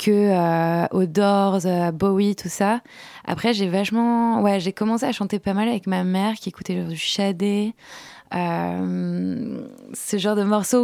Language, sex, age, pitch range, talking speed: French, female, 20-39, 165-195 Hz, 160 wpm